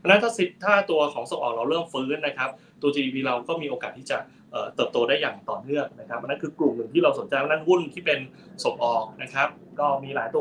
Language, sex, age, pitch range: Thai, male, 20-39, 130-170 Hz